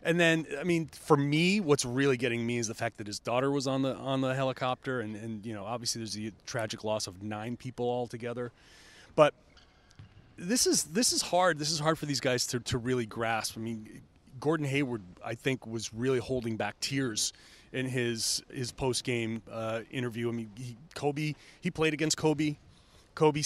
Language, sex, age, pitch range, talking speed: English, male, 30-49, 115-150 Hz, 200 wpm